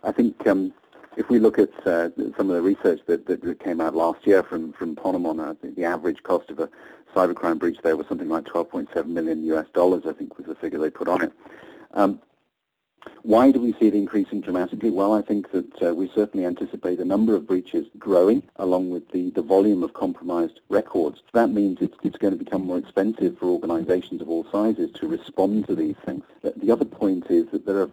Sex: male